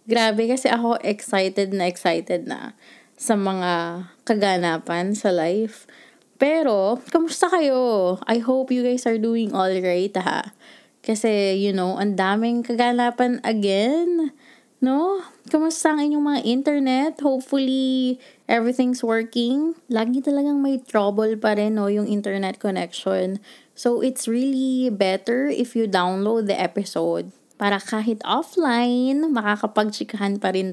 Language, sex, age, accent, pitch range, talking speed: English, female, 20-39, Filipino, 200-265 Hz, 125 wpm